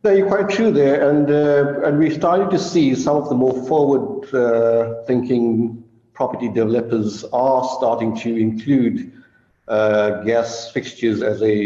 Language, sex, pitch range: English, male, 110-130 Hz